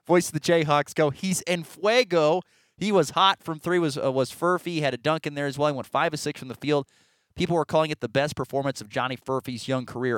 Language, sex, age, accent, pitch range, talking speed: English, male, 30-49, American, 125-155 Hz, 265 wpm